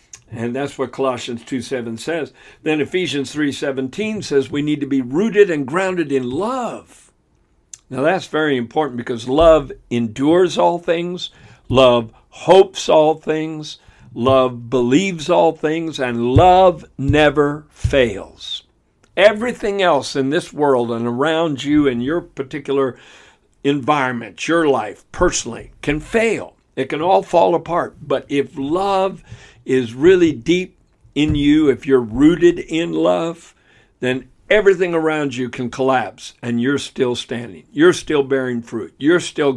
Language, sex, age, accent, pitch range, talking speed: English, male, 60-79, American, 125-160 Hz, 140 wpm